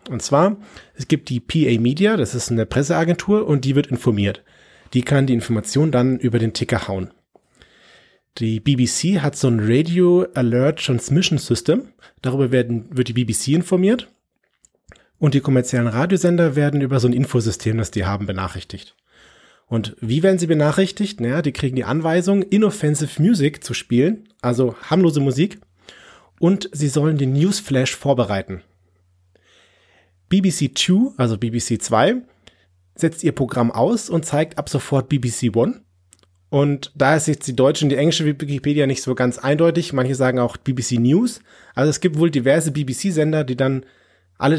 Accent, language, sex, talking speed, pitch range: German, German, male, 155 wpm, 120-155 Hz